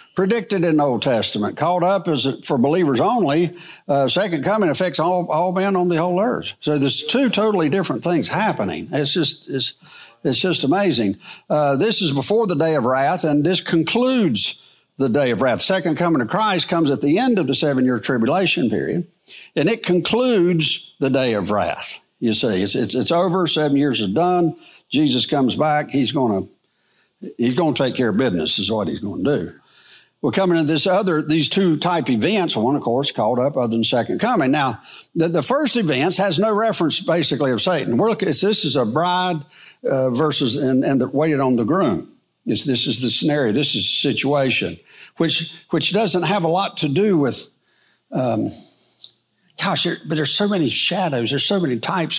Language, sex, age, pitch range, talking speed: English, male, 60-79, 140-185 Hz, 195 wpm